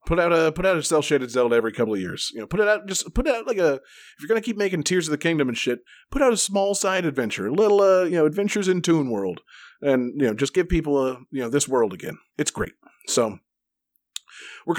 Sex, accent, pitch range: male, American, 120-170 Hz